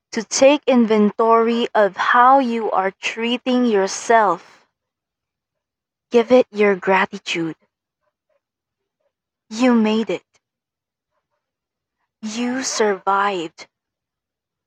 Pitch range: 185-230 Hz